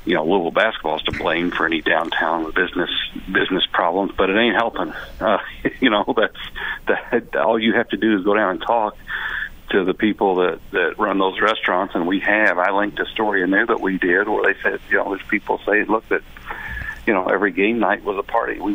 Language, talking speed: English, 225 wpm